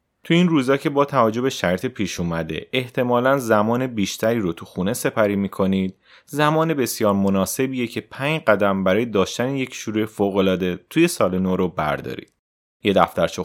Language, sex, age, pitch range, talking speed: Persian, male, 30-49, 95-125 Hz, 160 wpm